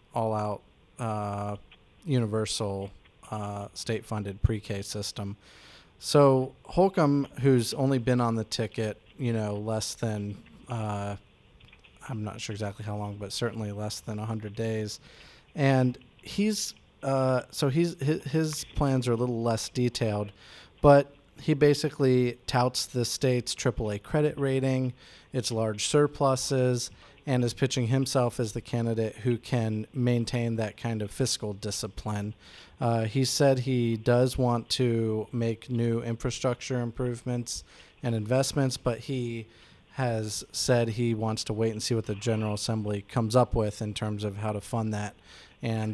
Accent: American